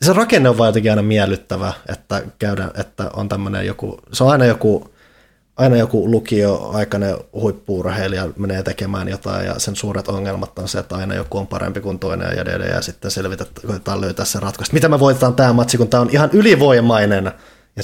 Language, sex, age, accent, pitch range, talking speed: Finnish, male, 20-39, native, 95-120 Hz, 190 wpm